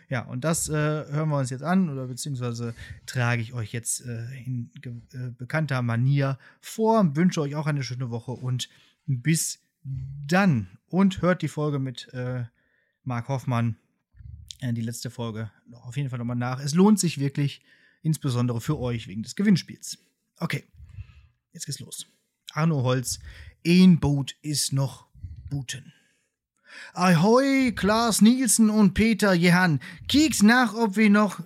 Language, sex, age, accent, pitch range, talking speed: German, male, 30-49, German, 125-180 Hz, 150 wpm